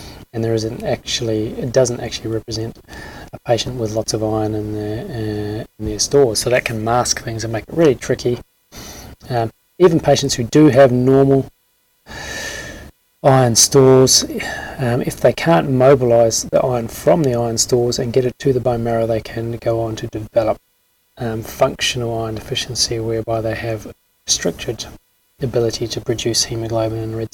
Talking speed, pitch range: 170 wpm, 110-125 Hz